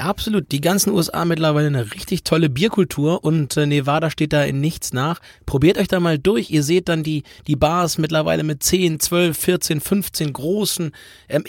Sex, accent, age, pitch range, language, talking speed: male, German, 30-49, 135-170 Hz, German, 190 wpm